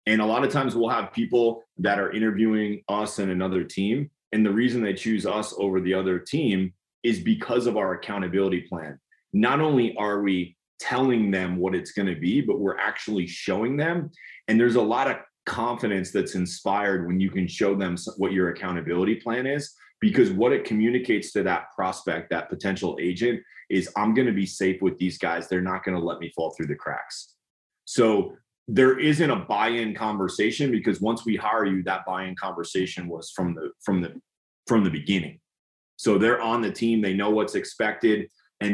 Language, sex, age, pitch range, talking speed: English, male, 30-49, 95-120 Hz, 195 wpm